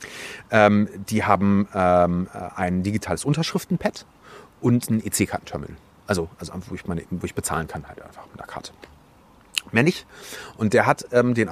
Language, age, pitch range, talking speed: German, 30-49, 100-135 Hz, 145 wpm